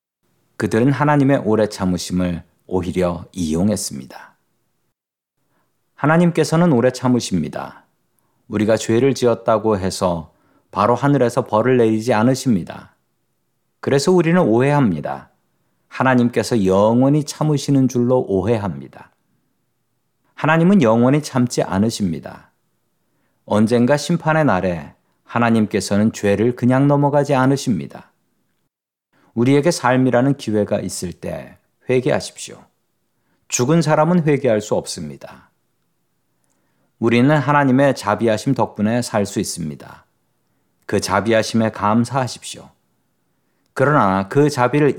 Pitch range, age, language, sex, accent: 105-140 Hz, 40-59, Korean, male, native